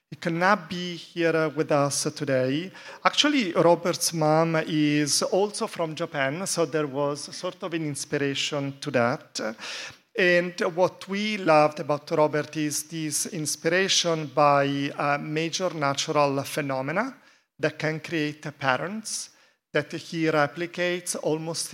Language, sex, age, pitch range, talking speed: English, male, 40-59, 145-175 Hz, 120 wpm